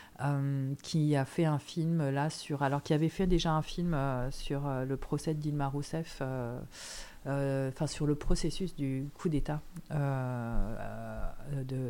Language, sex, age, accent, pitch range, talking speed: French, female, 40-59, French, 140-165 Hz, 160 wpm